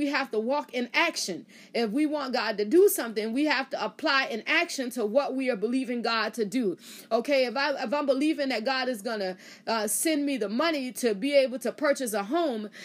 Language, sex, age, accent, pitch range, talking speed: English, female, 30-49, American, 245-310 Hz, 235 wpm